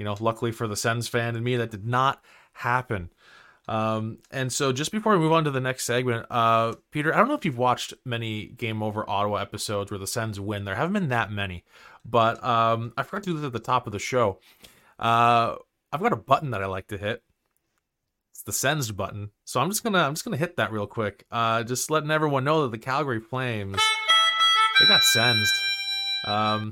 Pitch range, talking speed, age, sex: 115-155 Hz, 220 wpm, 20-39, male